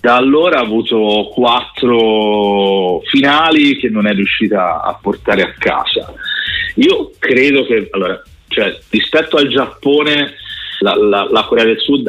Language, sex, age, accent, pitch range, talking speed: Italian, male, 40-59, native, 100-130 Hz, 140 wpm